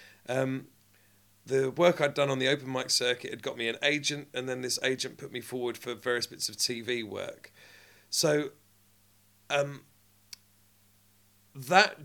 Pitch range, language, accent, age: 105-130 Hz, English, British, 40-59